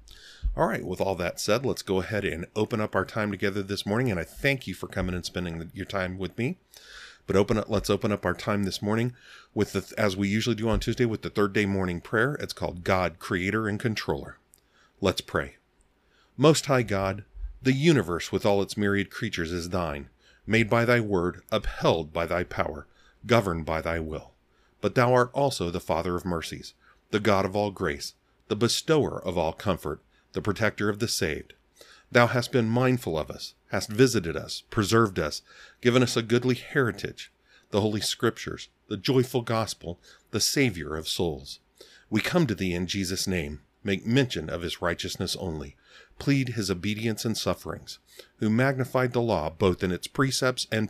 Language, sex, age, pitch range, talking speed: English, male, 40-59, 90-115 Hz, 190 wpm